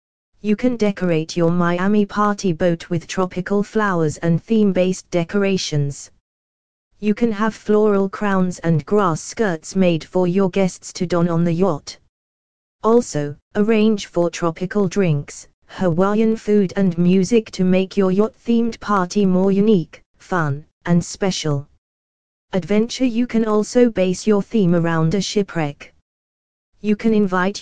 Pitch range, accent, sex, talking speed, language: 170-210 Hz, British, female, 135 wpm, English